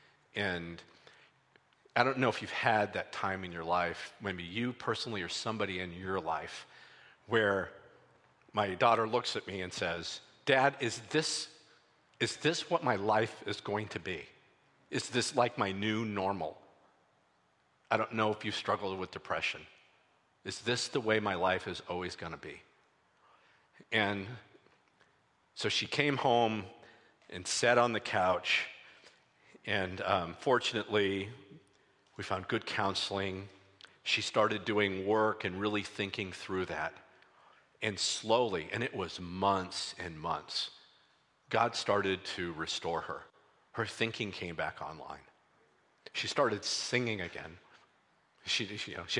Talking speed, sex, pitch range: 140 wpm, male, 95-115 Hz